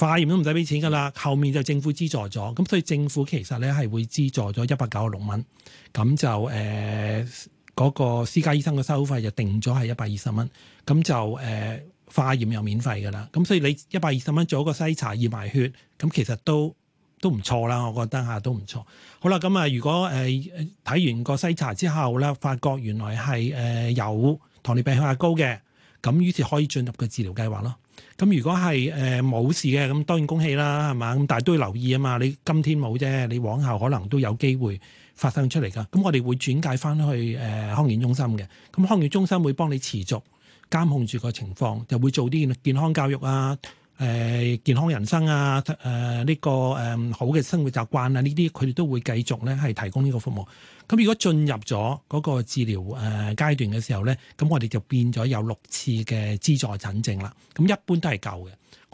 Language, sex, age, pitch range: Chinese, male, 30-49, 115-150 Hz